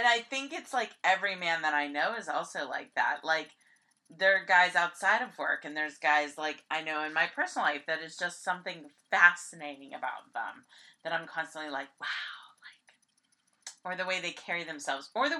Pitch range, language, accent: 155-200 Hz, English, American